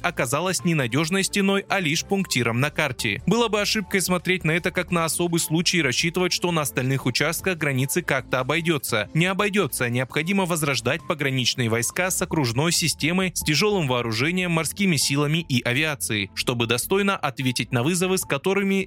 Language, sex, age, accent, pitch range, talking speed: Russian, male, 20-39, native, 130-180 Hz, 160 wpm